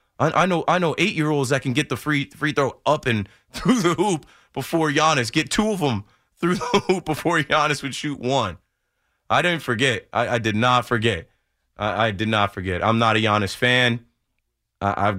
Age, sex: 30-49, male